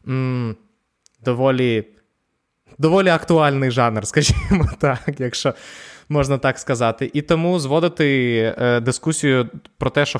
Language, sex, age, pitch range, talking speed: Ukrainian, male, 20-39, 120-140 Hz, 120 wpm